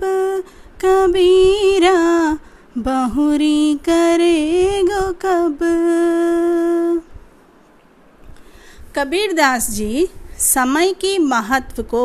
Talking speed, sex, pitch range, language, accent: 50 wpm, female, 225-335 Hz, Hindi, native